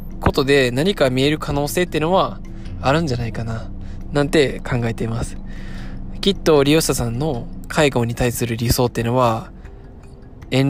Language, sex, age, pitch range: Japanese, male, 20-39, 110-140 Hz